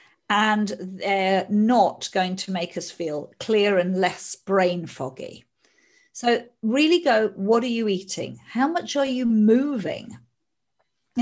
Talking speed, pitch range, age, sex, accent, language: 140 wpm, 185-235 Hz, 50-69, female, British, English